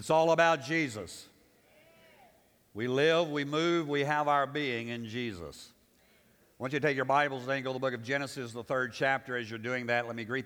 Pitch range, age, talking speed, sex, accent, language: 120-150 Hz, 50-69, 225 wpm, male, American, English